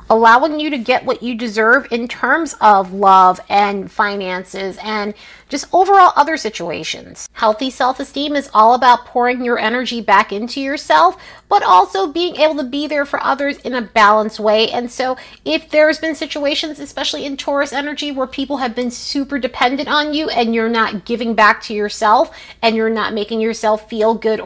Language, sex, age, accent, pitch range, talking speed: English, female, 30-49, American, 215-285 Hz, 185 wpm